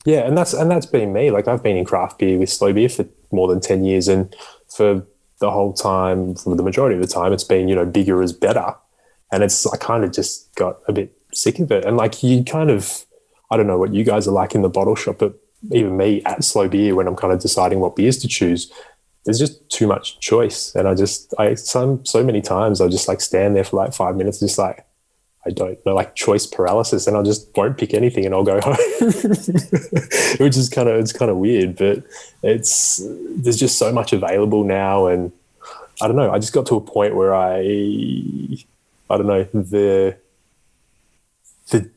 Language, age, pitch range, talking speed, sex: English, 20-39, 95-125 Hz, 225 wpm, male